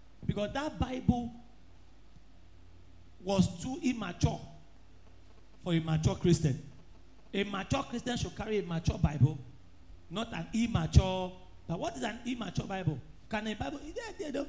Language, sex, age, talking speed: English, male, 40-59, 130 wpm